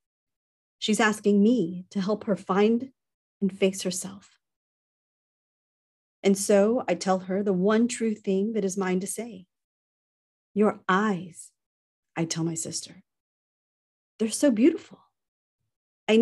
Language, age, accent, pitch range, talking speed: English, 40-59, American, 185-220 Hz, 125 wpm